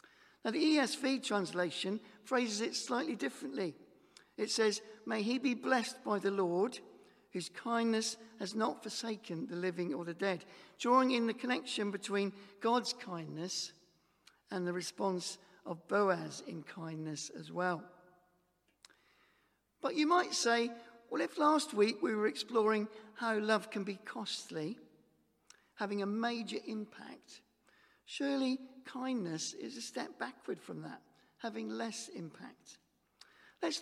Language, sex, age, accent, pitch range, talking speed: English, male, 50-69, British, 180-235 Hz, 135 wpm